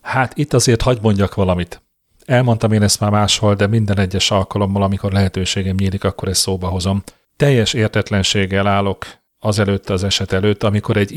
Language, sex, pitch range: Hungarian, male, 95-115 Hz